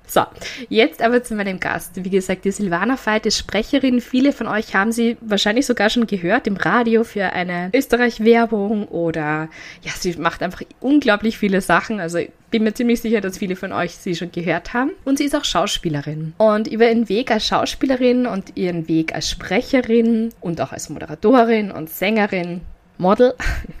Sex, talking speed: female, 180 wpm